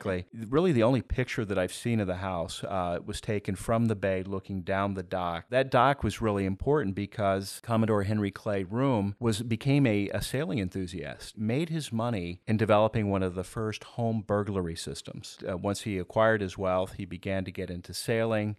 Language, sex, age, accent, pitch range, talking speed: English, male, 40-59, American, 95-110 Hz, 190 wpm